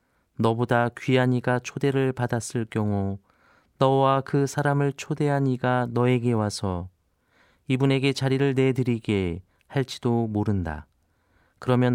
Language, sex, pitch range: Korean, male, 100-135 Hz